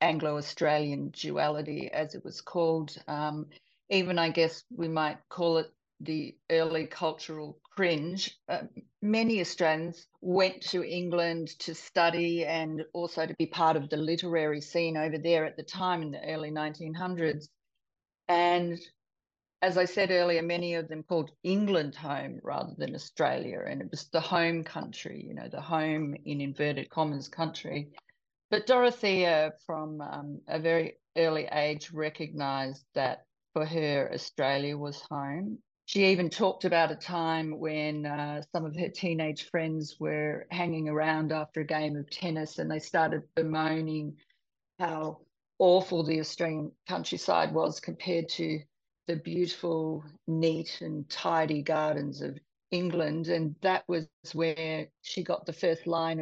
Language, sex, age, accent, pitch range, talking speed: English, female, 40-59, Australian, 155-170 Hz, 145 wpm